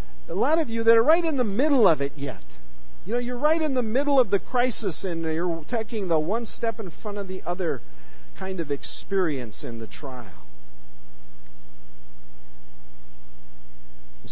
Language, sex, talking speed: English, male, 170 wpm